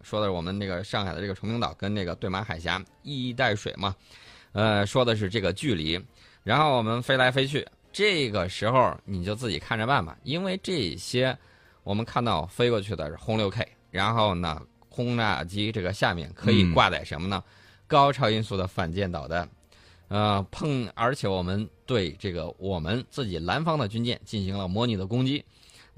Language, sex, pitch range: Chinese, male, 95-130 Hz